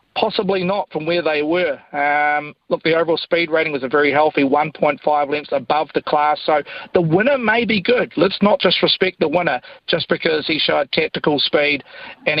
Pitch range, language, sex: 145-175 Hz, English, male